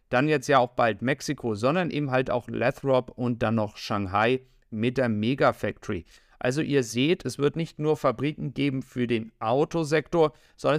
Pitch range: 120-145 Hz